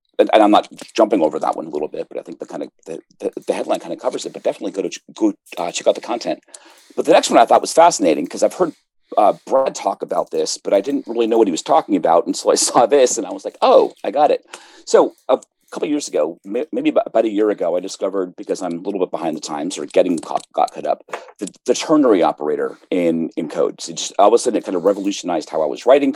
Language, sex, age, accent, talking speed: English, male, 40-59, American, 280 wpm